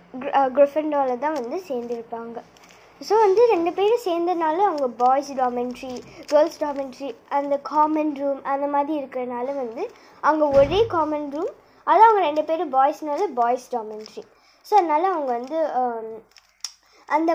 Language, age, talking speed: Tamil, 20-39, 130 wpm